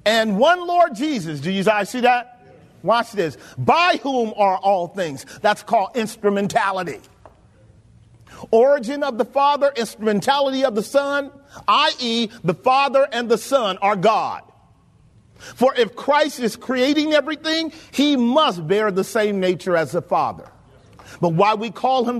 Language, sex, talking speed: English, male, 150 wpm